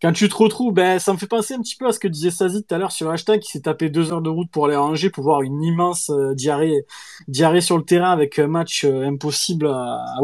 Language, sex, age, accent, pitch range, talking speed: French, male, 20-39, French, 140-180 Hz, 300 wpm